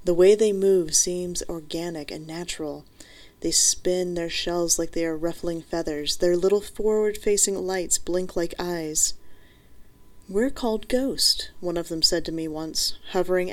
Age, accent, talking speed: 30-49, American, 155 wpm